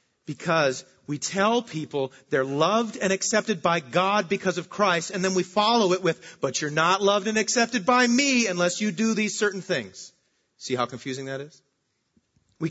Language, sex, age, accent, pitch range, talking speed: English, male, 40-59, American, 130-180 Hz, 185 wpm